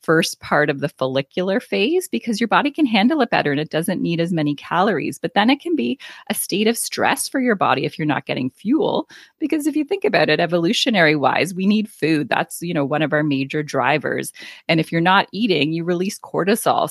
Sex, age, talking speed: female, 30-49, 225 wpm